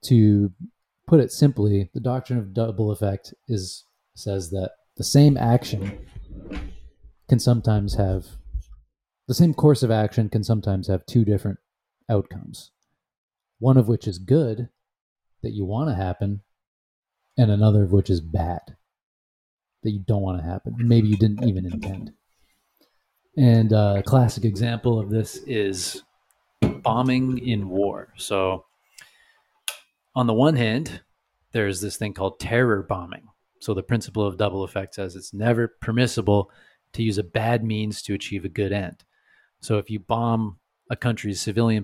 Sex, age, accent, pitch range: male, 30-49, American, 95-120 Hz